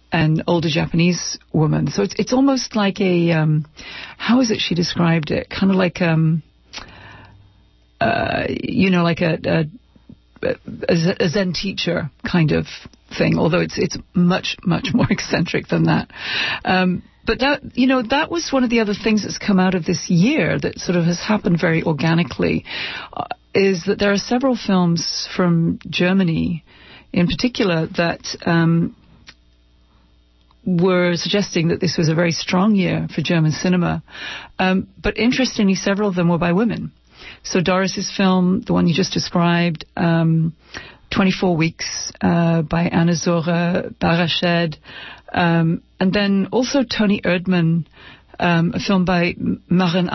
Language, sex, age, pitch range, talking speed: English, female, 40-59, 165-195 Hz, 155 wpm